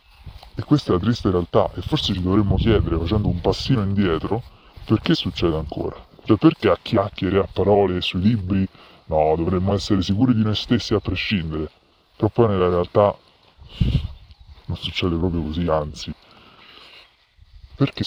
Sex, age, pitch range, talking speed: female, 30-49, 80-105 Hz, 150 wpm